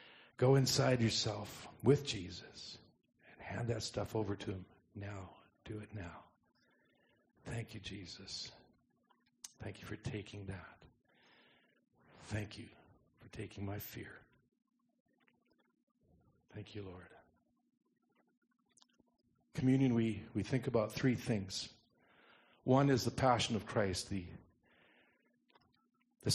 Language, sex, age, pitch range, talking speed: English, male, 50-69, 100-130 Hz, 110 wpm